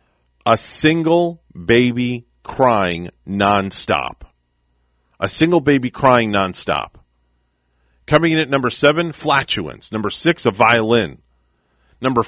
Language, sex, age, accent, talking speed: English, male, 50-69, American, 105 wpm